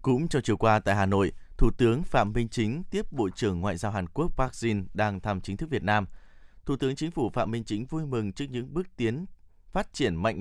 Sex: male